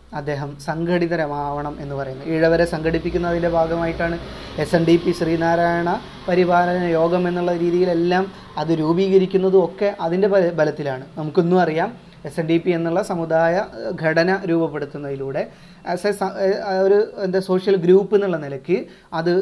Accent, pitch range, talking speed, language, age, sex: native, 165-195 Hz, 125 wpm, Malayalam, 30-49, male